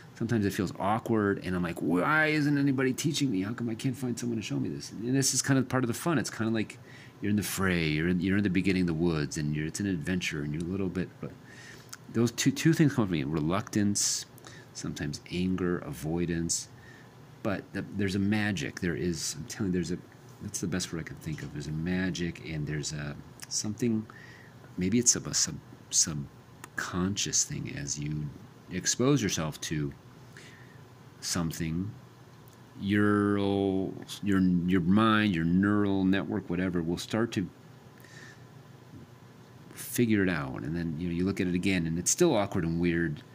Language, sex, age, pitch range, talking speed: English, male, 40-59, 90-125 Hz, 195 wpm